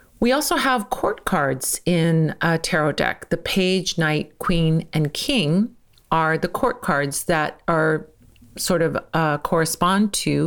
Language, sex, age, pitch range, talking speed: English, female, 40-59, 155-190 Hz, 150 wpm